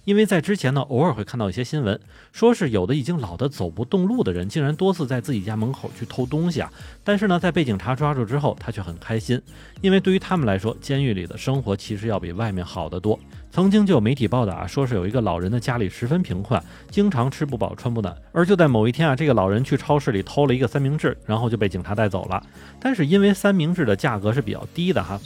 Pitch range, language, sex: 105-155 Hz, Chinese, male